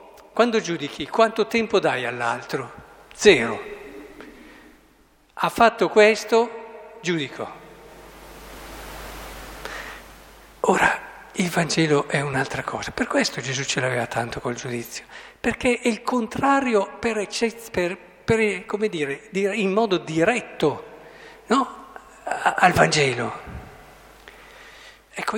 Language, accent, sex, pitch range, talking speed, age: Italian, native, male, 165-230 Hz, 95 wpm, 50-69